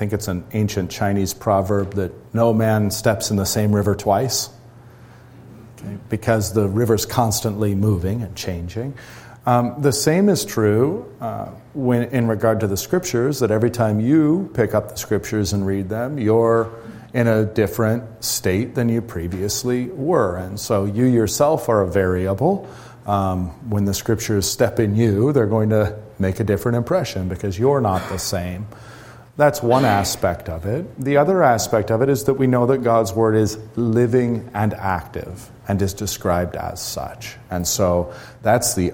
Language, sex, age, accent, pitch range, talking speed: English, male, 40-59, American, 100-120 Hz, 175 wpm